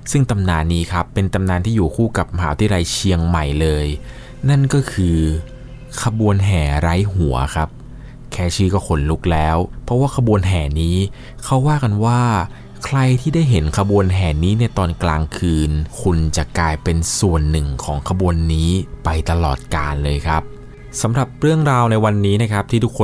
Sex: male